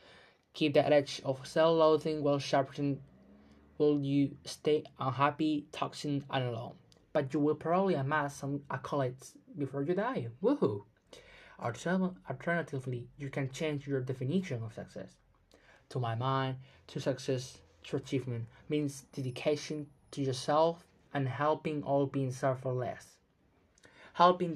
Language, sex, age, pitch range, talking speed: English, male, 20-39, 135-150 Hz, 125 wpm